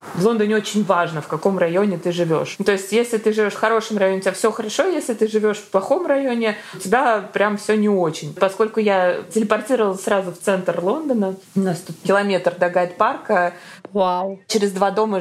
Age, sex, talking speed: 20-39, female, 195 wpm